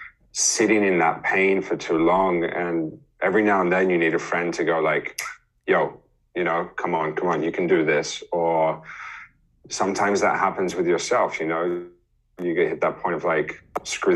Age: 30-49